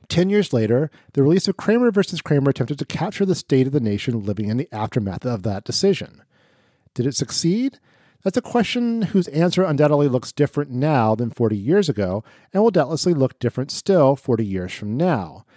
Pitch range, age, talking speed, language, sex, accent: 115-175 Hz, 40-59, 195 wpm, English, male, American